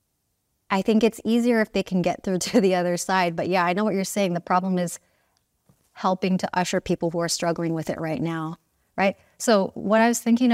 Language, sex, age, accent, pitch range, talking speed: English, female, 30-49, American, 165-190 Hz, 230 wpm